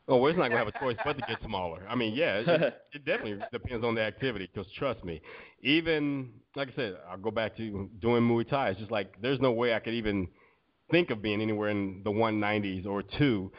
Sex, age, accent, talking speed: male, 30-49, American, 245 wpm